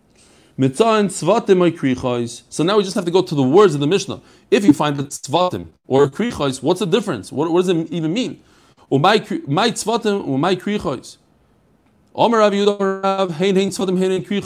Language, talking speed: English, 140 wpm